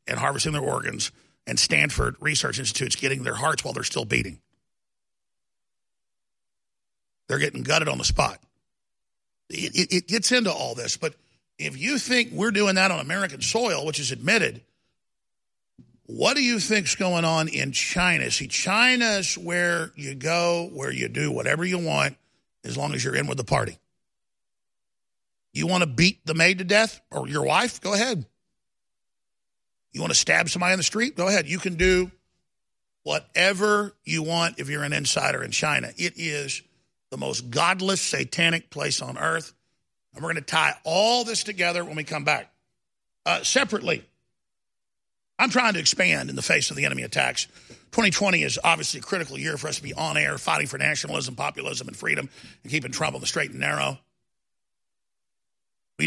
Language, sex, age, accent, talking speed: English, male, 50-69, American, 175 wpm